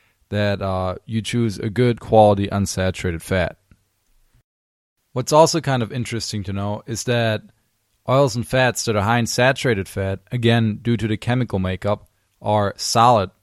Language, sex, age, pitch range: English, male, 20-39, 95-115 Hz